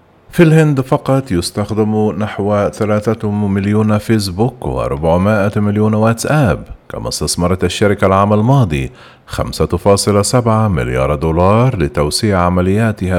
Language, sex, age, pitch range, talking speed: Arabic, male, 40-59, 85-110 Hz, 100 wpm